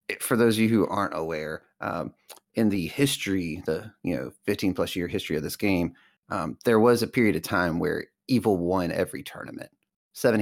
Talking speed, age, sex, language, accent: 195 wpm, 30-49, male, English, American